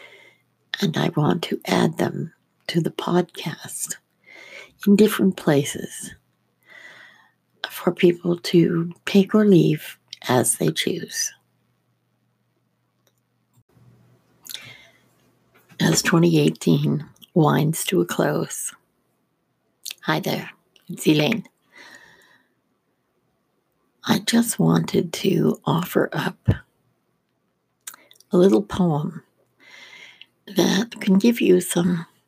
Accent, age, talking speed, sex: American, 60-79, 85 wpm, female